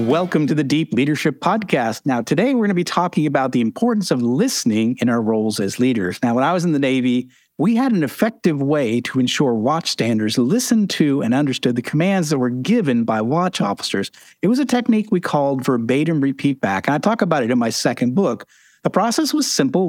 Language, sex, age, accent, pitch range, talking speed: English, male, 50-69, American, 125-175 Hz, 215 wpm